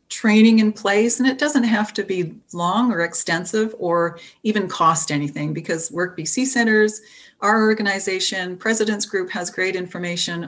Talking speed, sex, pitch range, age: 150 wpm, female, 170-215 Hz, 40-59